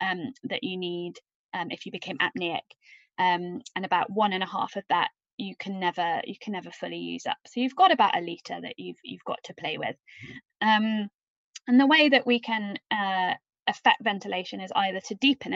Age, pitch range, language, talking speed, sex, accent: 20-39, 200-265 Hz, English, 205 wpm, female, British